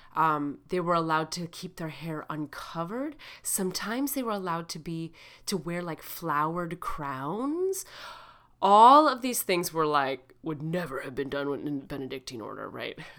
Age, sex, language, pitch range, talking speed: 30-49, female, English, 160-255 Hz, 165 wpm